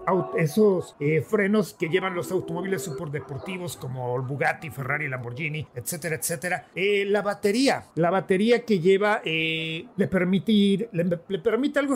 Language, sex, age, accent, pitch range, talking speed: English, male, 50-69, Mexican, 150-210 Hz, 155 wpm